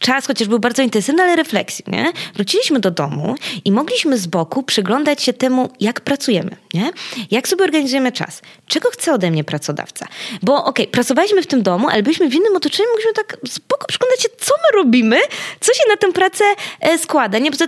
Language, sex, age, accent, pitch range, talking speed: Polish, female, 20-39, native, 215-290 Hz, 195 wpm